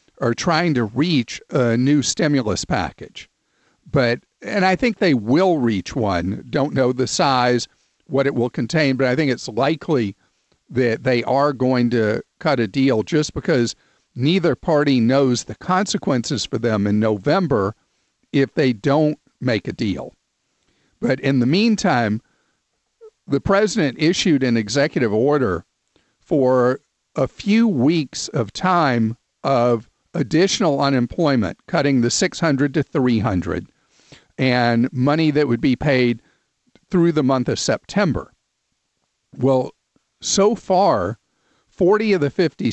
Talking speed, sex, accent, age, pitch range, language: 135 wpm, male, American, 50-69, 120-155 Hz, English